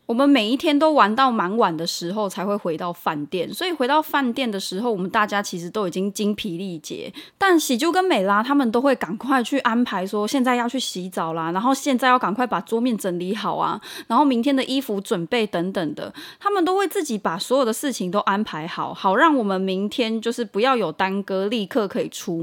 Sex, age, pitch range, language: female, 20-39, 195-280 Hz, Chinese